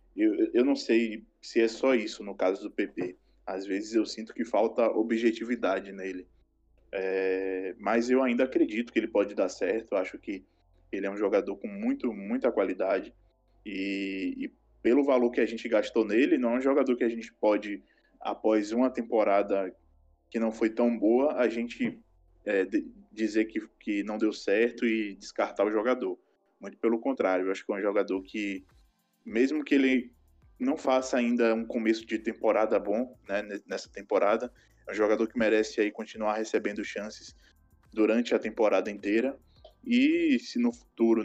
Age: 20-39